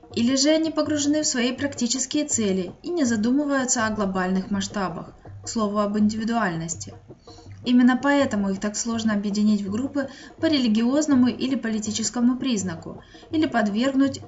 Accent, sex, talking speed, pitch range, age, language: native, female, 140 wpm, 190-255 Hz, 20-39, Russian